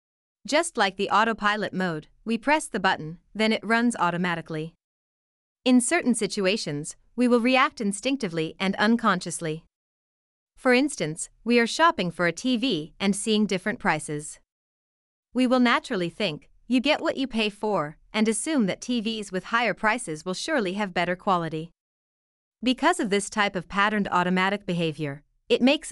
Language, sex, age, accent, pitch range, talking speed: German, female, 30-49, American, 175-240 Hz, 155 wpm